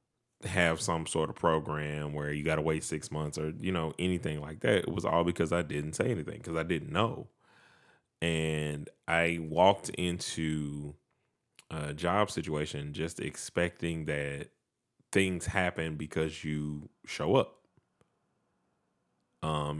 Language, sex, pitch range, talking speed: English, male, 75-85 Hz, 140 wpm